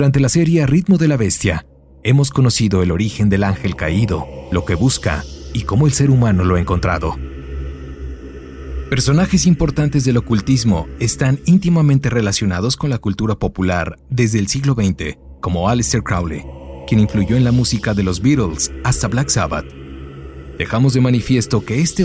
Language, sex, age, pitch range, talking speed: Spanish, male, 40-59, 75-125 Hz, 160 wpm